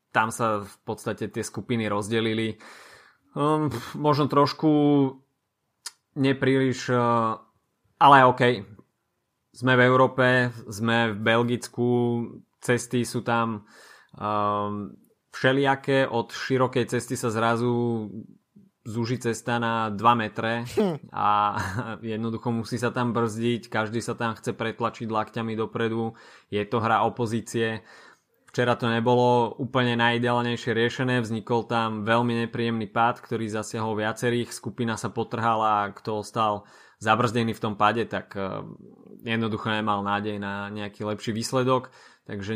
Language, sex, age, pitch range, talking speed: Slovak, male, 20-39, 110-120 Hz, 120 wpm